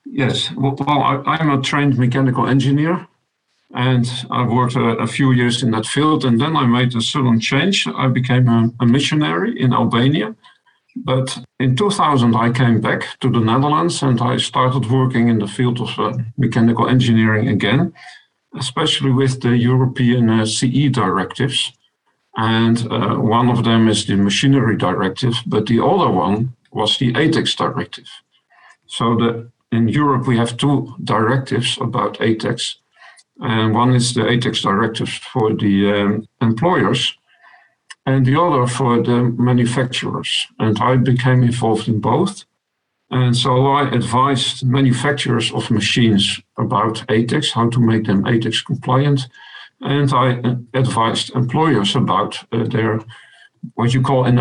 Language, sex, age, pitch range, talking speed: English, male, 50-69, 115-130 Hz, 140 wpm